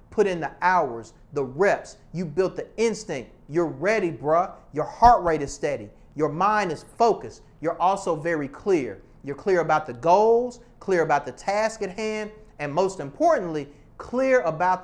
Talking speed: 170 wpm